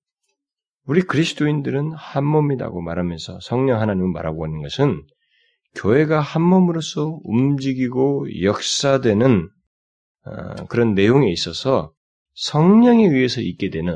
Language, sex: Korean, male